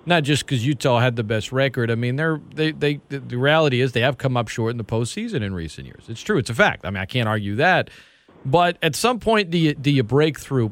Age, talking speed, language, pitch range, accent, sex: 40-59, 270 wpm, English, 130-180 Hz, American, male